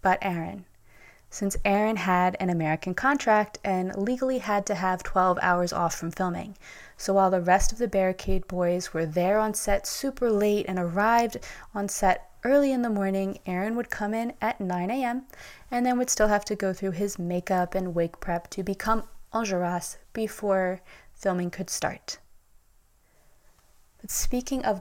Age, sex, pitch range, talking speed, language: 20-39, female, 185-220 Hz, 170 wpm, English